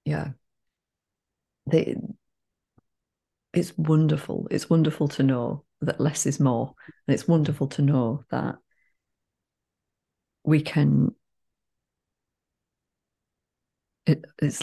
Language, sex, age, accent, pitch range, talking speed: English, female, 30-49, British, 140-165 Hz, 80 wpm